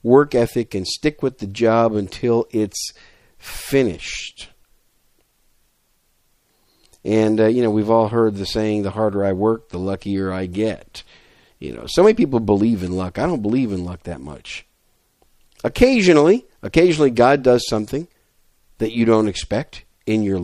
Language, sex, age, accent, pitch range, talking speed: English, male, 50-69, American, 105-135 Hz, 155 wpm